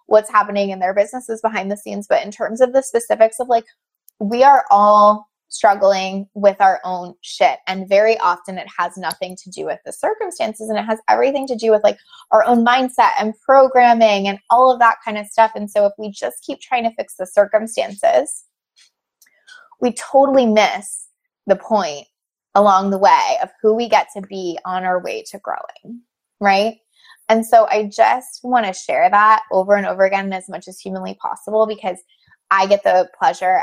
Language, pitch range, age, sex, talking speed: English, 190-235 Hz, 20-39, female, 195 wpm